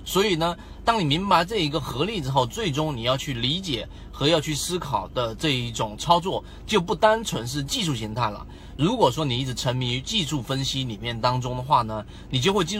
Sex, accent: male, native